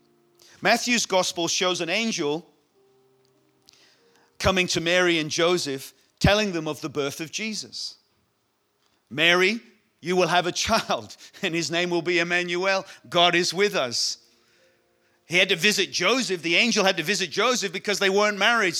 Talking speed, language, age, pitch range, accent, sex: 155 wpm, English, 40-59, 140-195 Hz, British, male